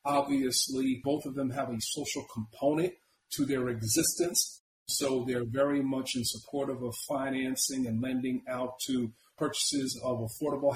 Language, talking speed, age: English, 145 wpm, 40-59